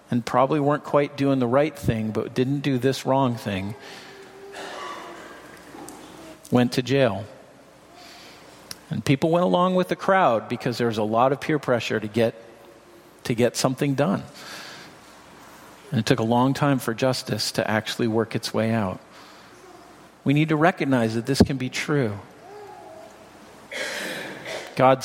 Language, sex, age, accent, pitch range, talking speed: English, male, 50-69, American, 115-145 Hz, 145 wpm